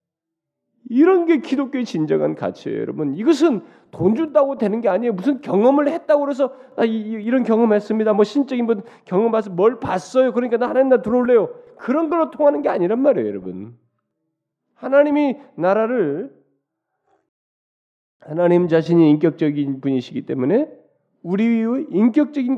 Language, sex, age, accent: Korean, male, 40-59, native